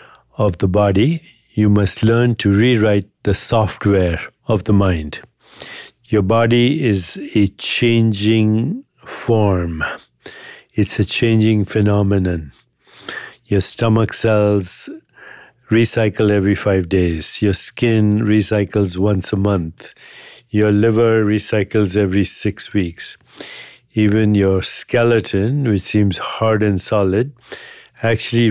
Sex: male